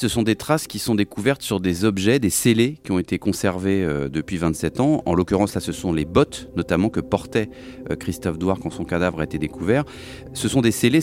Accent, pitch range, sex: French, 90-115 Hz, male